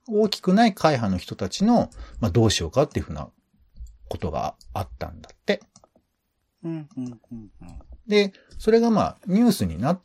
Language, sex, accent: Japanese, male, native